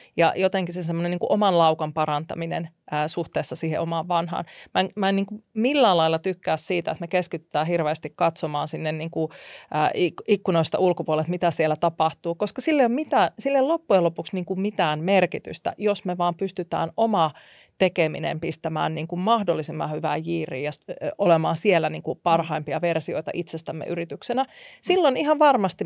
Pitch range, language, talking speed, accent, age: 165-210 Hz, Finnish, 130 wpm, native, 30-49